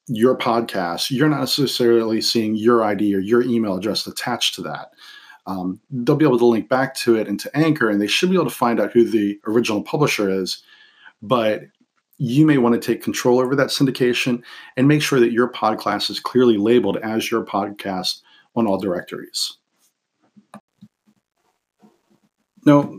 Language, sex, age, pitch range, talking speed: English, male, 40-59, 100-125 Hz, 170 wpm